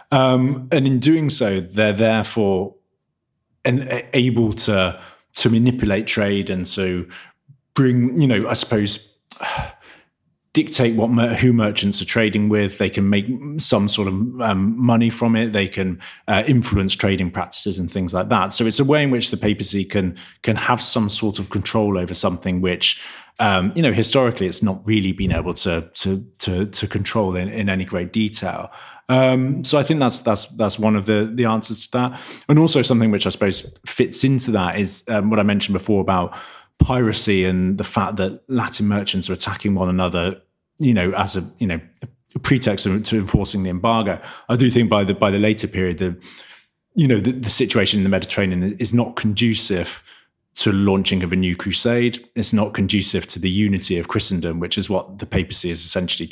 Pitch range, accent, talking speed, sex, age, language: 95-120 Hz, British, 195 wpm, male, 30-49, English